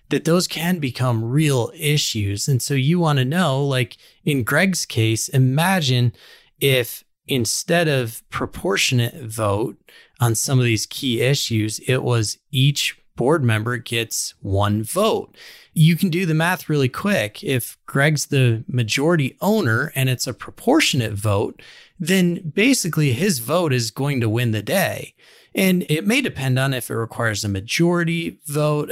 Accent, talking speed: American, 155 wpm